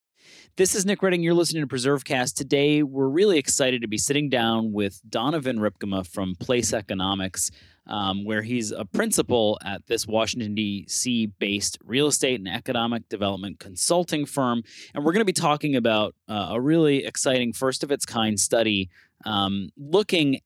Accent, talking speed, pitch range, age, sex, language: American, 155 wpm, 100-135 Hz, 30-49, male, English